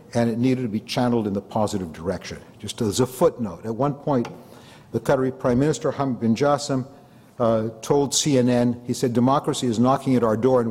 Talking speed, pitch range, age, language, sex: 200 wpm, 110-130 Hz, 60-79, English, male